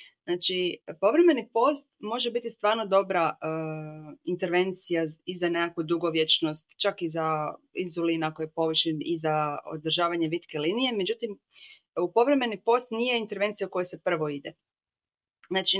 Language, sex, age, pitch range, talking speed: Croatian, female, 30-49, 165-220 Hz, 140 wpm